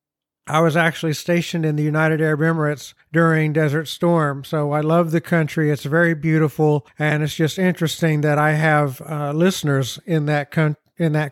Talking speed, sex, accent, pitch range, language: 170 wpm, male, American, 150-190 Hz, English